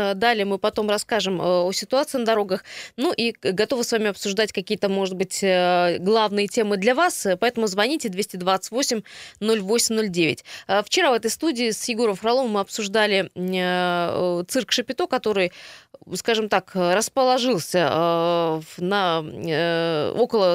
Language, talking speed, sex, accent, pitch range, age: Russian, 130 wpm, female, native, 180-220 Hz, 20-39